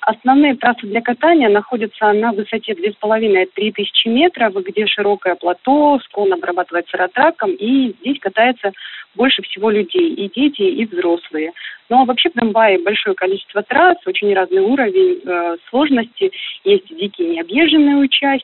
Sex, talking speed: female, 135 wpm